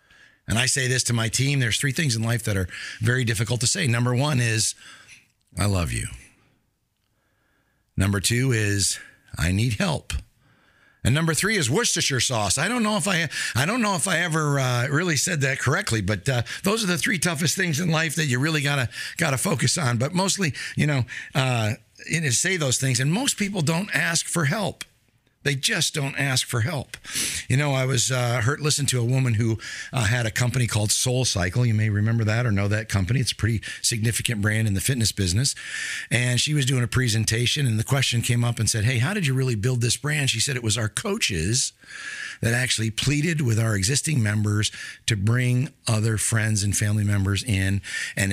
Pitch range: 110-140 Hz